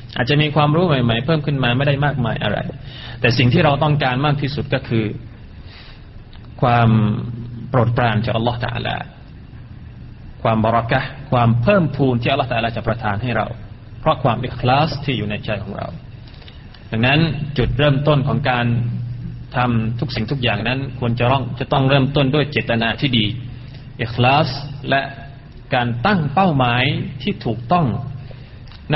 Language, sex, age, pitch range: Thai, male, 30-49, 115-140 Hz